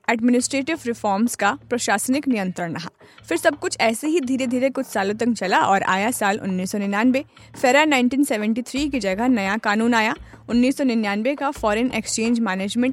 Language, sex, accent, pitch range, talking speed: Hindi, female, native, 205-265 Hz, 105 wpm